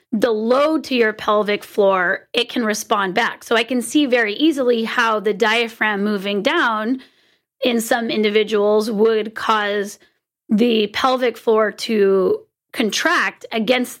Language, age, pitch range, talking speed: English, 30-49, 215-255 Hz, 135 wpm